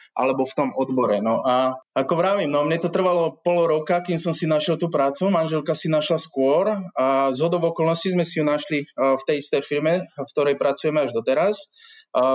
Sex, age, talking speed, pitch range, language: male, 20-39, 200 wpm, 135-165 Hz, Slovak